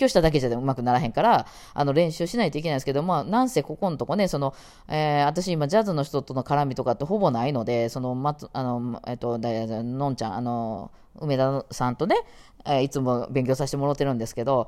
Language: Japanese